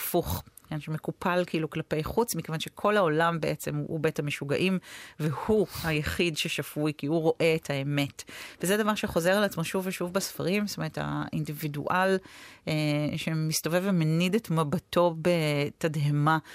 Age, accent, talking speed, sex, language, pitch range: 40-59, native, 135 wpm, female, Hebrew, 155-190 Hz